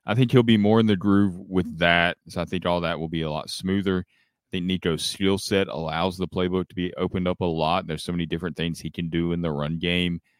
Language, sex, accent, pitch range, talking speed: English, male, American, 80-95 Hz, 265 wpm